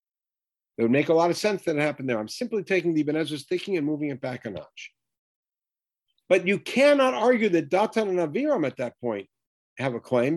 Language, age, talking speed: English, 50-69, 215 wpm